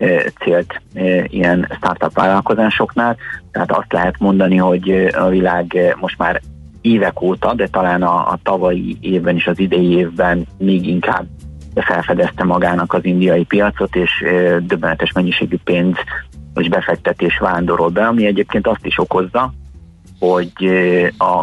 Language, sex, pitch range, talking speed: Hungarian, male, 85-95 Hz, 130 wpm